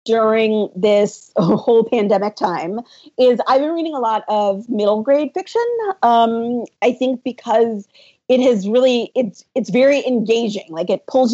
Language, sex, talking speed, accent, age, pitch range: English, female, 155 wpm, American, 40-59, 220-255 Hz